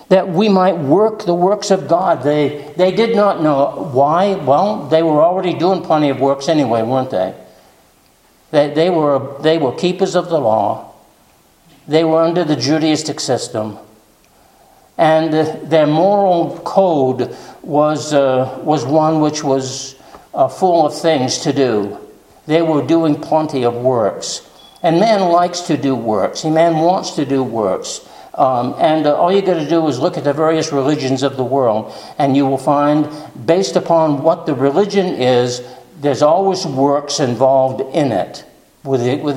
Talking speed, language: 165 wpm, English